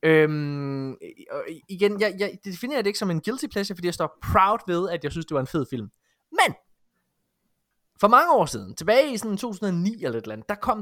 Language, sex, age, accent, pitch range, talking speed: Danish, male, 20-39, native, 140-200 Hz, 210 wpm